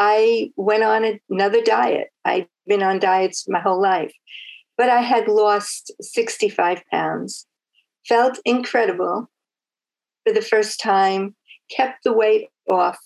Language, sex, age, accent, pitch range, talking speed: English, female, 50-69, American, 205-280 Hz, 130 wpm